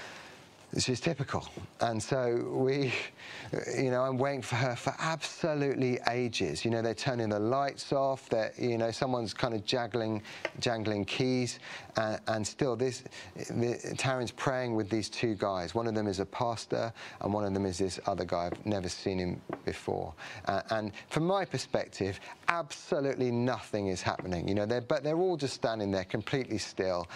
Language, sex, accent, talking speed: English, male, British, 175 wpm